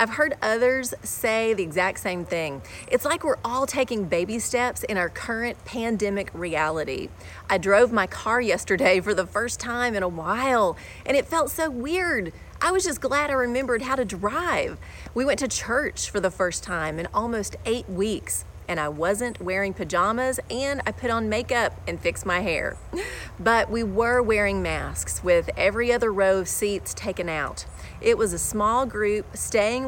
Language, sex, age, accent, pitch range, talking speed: English, female, 30-49, American, 190-245 Hz, 185 wpm